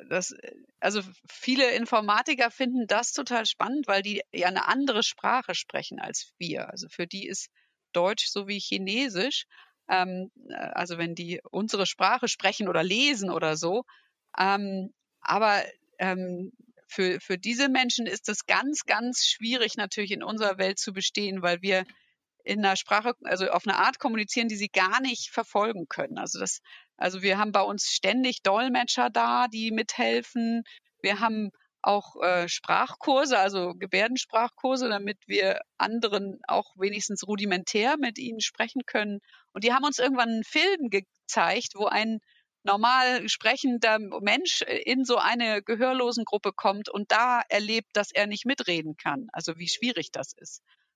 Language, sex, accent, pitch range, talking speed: German, female, German, 195-245 Hz, 155 wpm